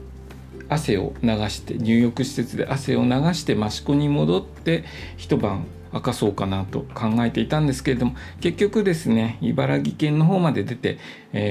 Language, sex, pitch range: Japanese, male, 100-150 Hz